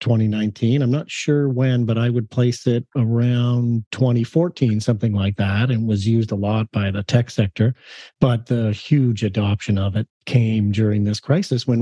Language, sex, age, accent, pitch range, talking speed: English, male, 40-59, American, 110-140 Hz, 180 wpm